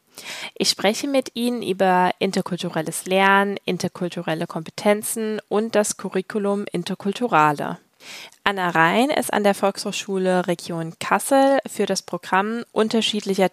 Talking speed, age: 110 wpm, 20-39